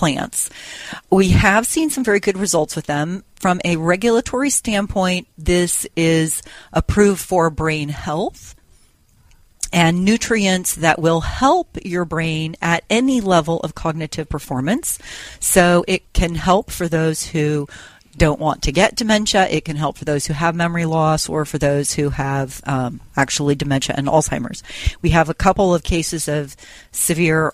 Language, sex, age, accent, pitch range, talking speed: English, female, 40-59, American, 145-175 Hz, 155 wpm